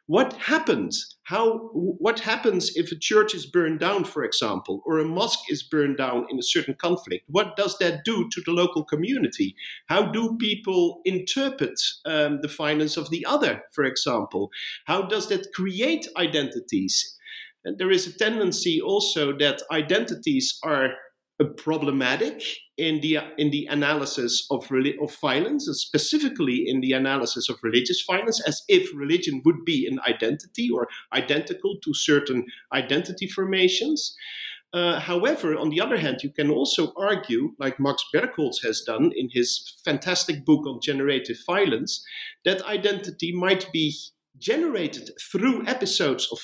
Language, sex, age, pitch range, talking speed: English, male, 50-69, 150-240 Hz, 150 wpm